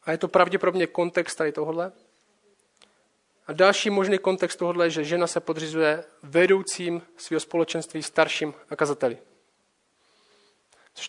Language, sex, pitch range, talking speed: Czech, male, 155-195 Hz, 120 wpm